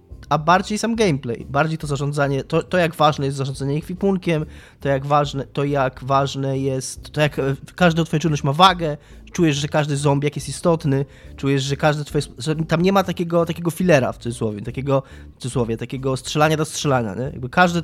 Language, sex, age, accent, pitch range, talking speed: Polish, male, 20-39, native, 130-160 Hz, 195 wpm